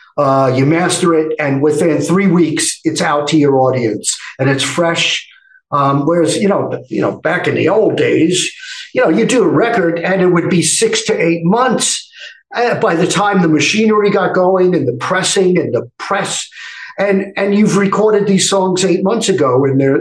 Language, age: English, 50-69